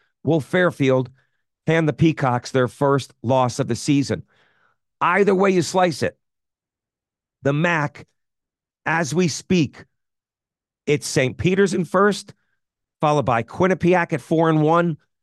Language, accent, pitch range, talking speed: English, American, 130-170 Hz, 130 wpm